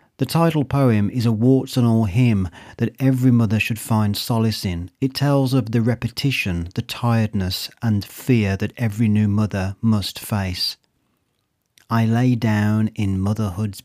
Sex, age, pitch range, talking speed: male, 40-59, 105-120 Hz, 145 wpm